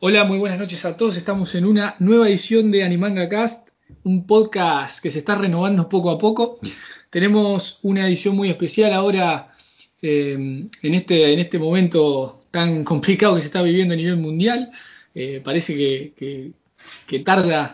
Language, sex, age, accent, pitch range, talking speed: Spanish, male, 20-39, Argentinian, 150-205 Hz, 170 wpm